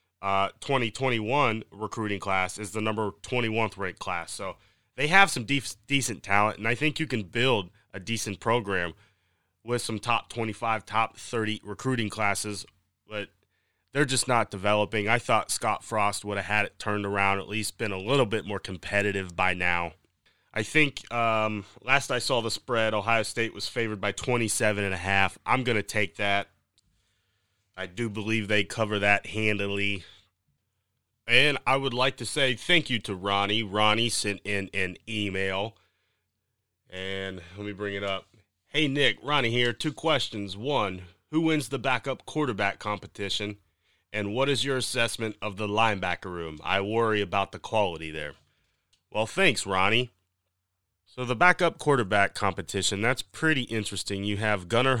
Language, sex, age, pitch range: English, male, 30-49, 100-115 Hz